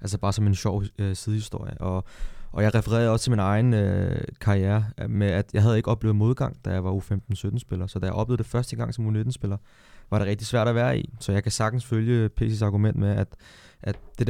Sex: male